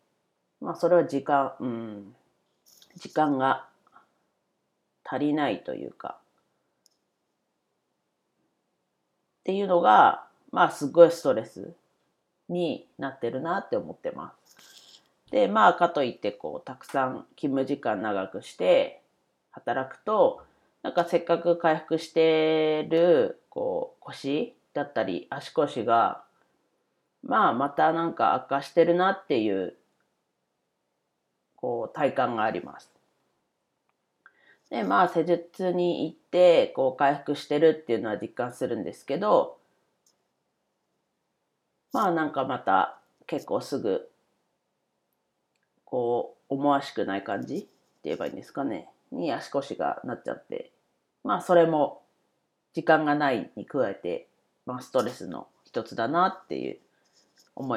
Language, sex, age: Japanese, female, 40-59